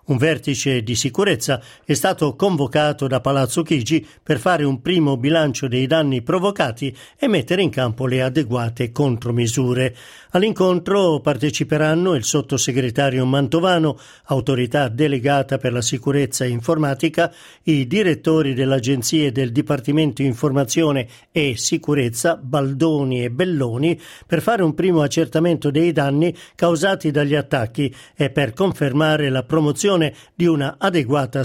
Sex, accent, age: male, native, 50-69